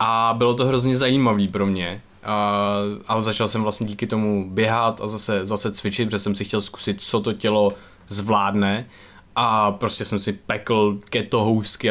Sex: male